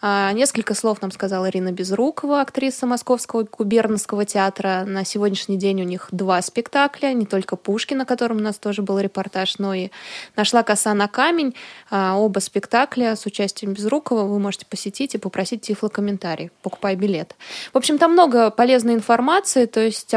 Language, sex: Russian, female